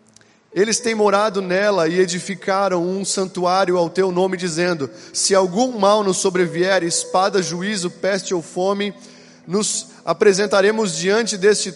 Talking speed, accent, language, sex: 135 wpm, Brazilian, Portuguese, male